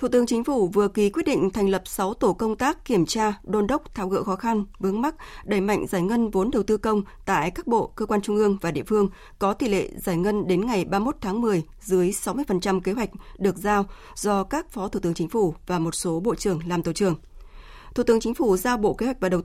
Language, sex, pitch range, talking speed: Vietnamese, female, 190-225 Hz, 255 wpm